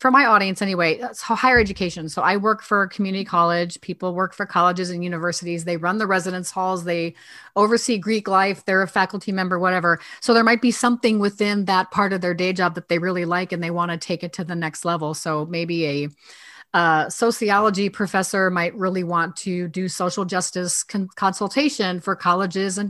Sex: female